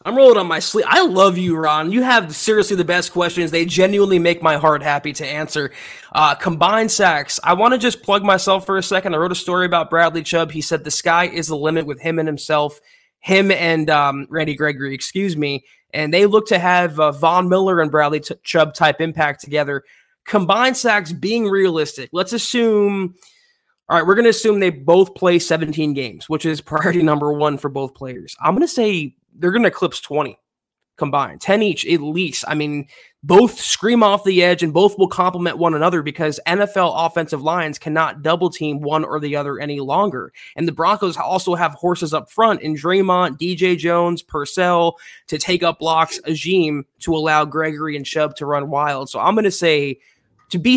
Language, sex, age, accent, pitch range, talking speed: English, male, 20-39, American, 150-190 Hz, 200 wpm